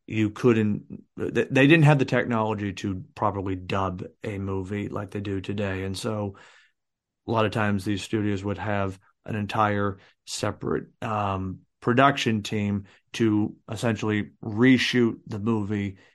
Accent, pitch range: American, 105-125 Hz